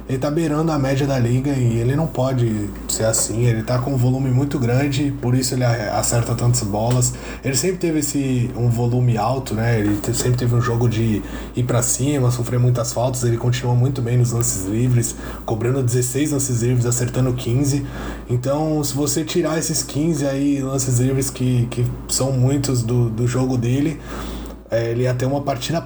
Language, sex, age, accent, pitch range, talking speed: Portuguese, male, 20-39, Brazilian, 120-140 Hz, 190 wpm